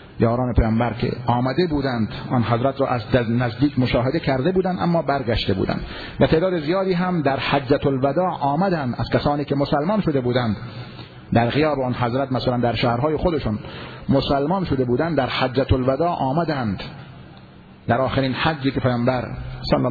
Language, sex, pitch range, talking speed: Persian, male, 115-140 Hz, 155 wpm